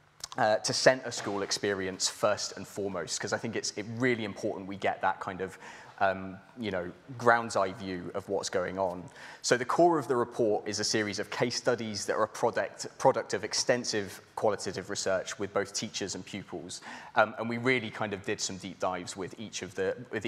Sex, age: male, 20-39